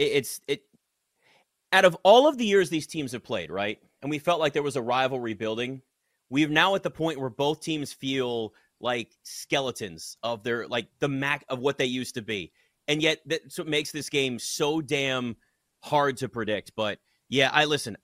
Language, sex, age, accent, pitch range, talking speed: English, male, 30-49, American, 120-160 Hz, 200 wpm